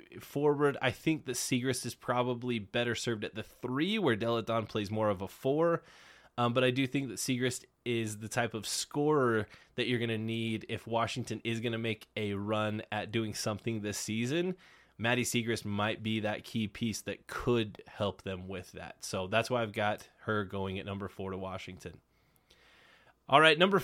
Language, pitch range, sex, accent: English, 110-135 Hz, male, American